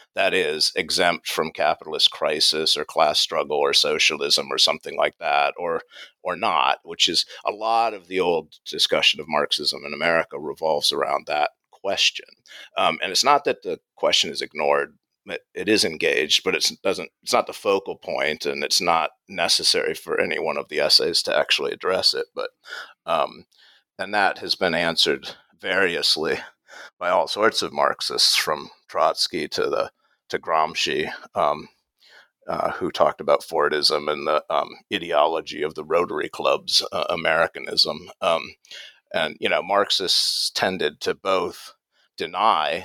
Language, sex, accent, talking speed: English, male, American, 160 wpm